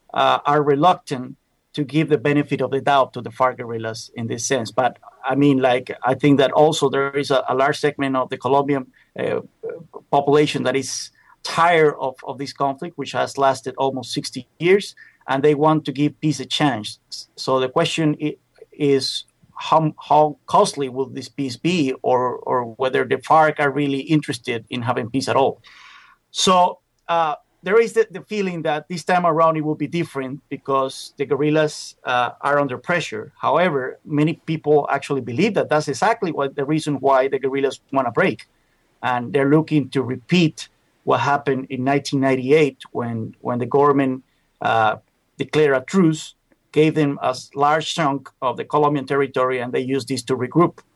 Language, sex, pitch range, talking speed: English, male, 130-155 Hz, 180 wpm